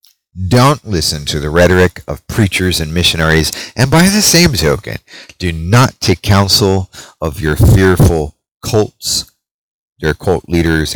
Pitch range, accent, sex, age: 80-110 Hz, American, male, 40-59